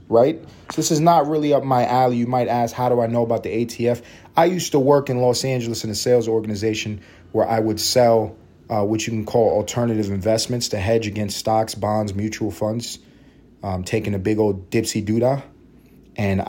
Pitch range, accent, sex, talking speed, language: 110-125 Hz, American, male, 205 wpm, English